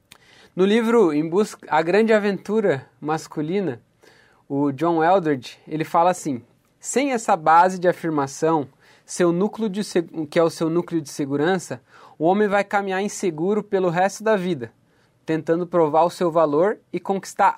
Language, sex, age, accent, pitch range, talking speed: Portuguese, male, 20-39, Brazilian, 150-205 Hz, 135 wpm